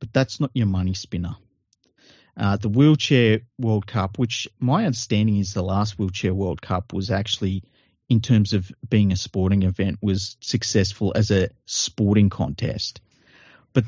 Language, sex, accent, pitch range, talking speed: English, male, Australian, 95-115 Hz, 155 wpm